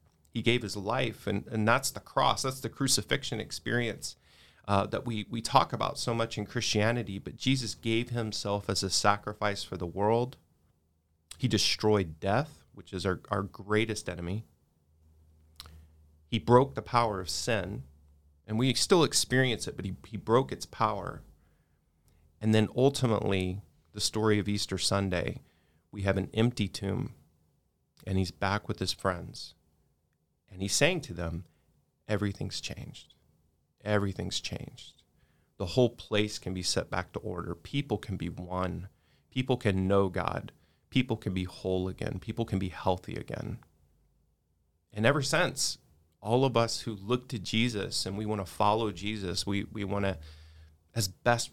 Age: 30-49